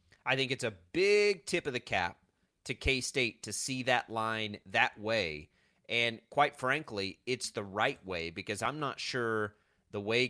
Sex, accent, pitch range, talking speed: male, American, 105-130 Hz, 175 wpm